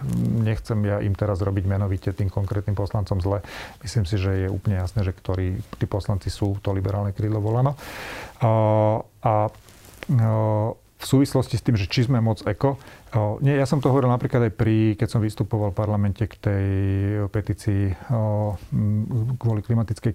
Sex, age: male, 40-59